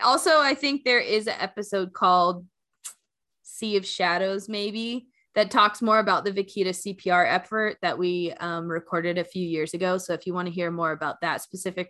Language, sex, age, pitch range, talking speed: English, female, 20-39, 160-205 Hz, 190 wpm